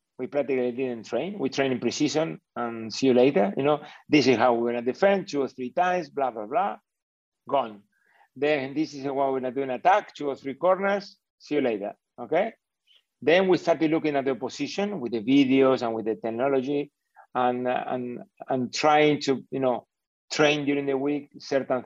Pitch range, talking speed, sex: 130-160 Hz, 190 wpm, male